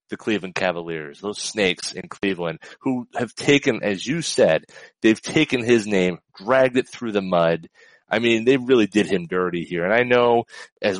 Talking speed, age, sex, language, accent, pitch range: 185 wpm, 30-49, male, English, American, 90-115 Hz